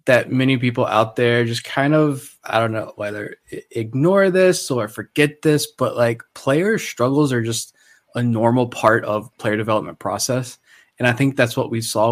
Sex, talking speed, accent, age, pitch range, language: male, 175 wpm, American, 20-39, 115-130 Hz, English